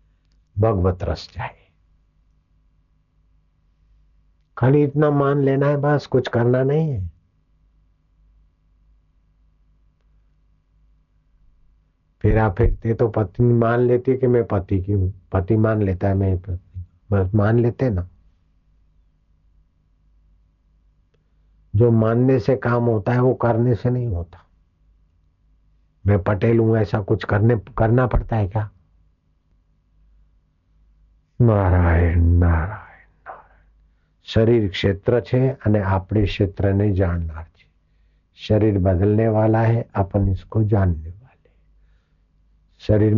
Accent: native